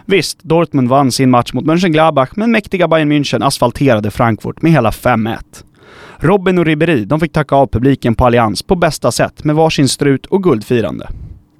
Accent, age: native, 30-49